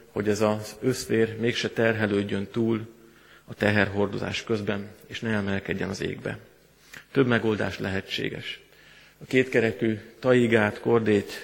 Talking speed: 115 wpm